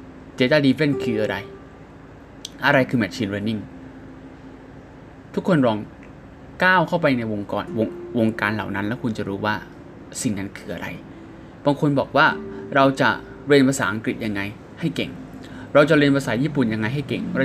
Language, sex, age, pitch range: Thai, male, 20-39, 100-135 Hz